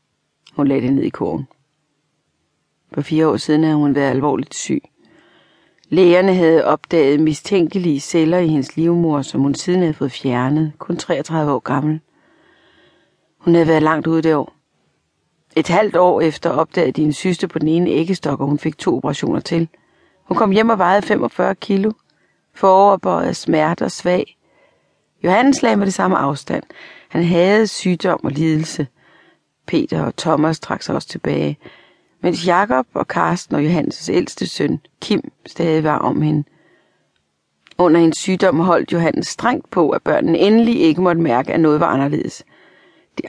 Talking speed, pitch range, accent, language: 165 wpm, 150-195 Hz, native, Danish